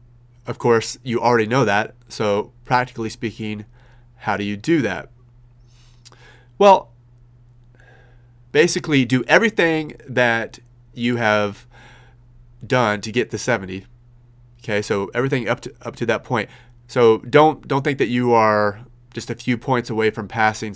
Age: 30-49